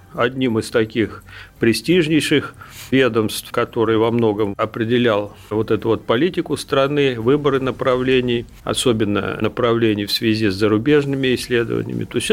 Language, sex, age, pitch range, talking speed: Russian, male, 50-69, 115-155 Hz, 120 wpm